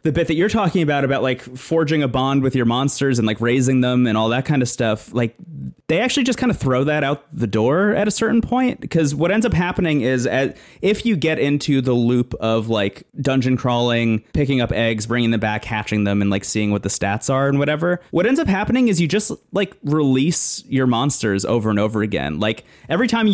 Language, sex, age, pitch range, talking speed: English, male, 20-39, 110-150 Hz, 230 wpm